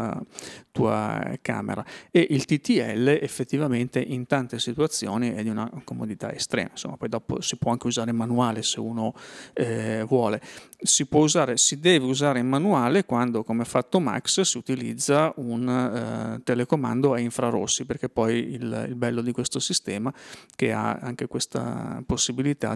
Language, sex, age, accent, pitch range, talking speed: Italian, male, 30-49, native, 120-140 Hz, 155 wpm